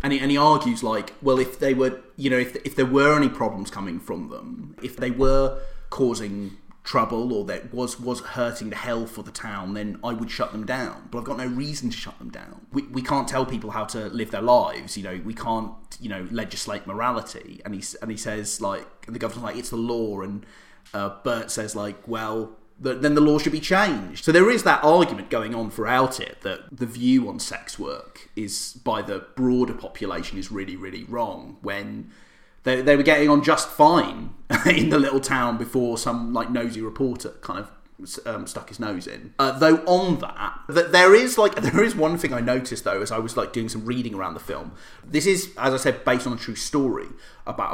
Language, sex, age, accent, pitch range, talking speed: English, male, 30-49, British, 110-140 Hz, 225 wpm